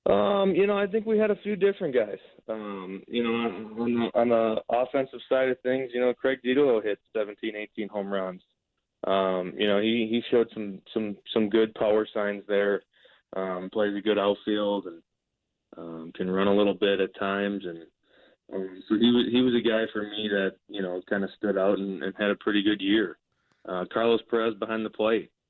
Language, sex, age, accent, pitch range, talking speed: English, male, 20-39, American, 95-110 Hz, 210 wpm